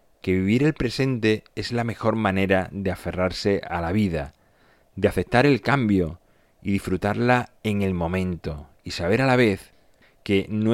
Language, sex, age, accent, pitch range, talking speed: Spanish, male, 30-49, Spanish, 95-120 Hz, 160 wpm